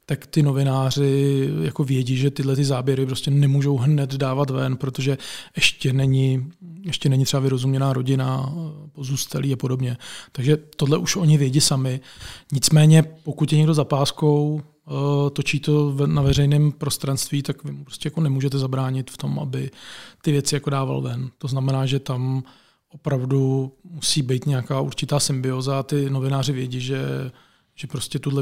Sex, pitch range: male, 135-155 Hz